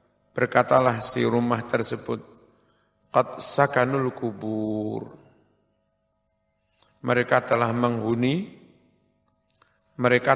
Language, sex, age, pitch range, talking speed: Indonesian, male, 50-69, 115-145 Hz, 65 wpm